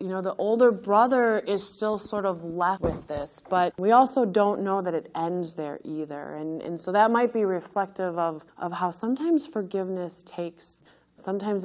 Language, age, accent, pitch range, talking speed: English, 20-39, American, 165-200 Hz, 185 wpm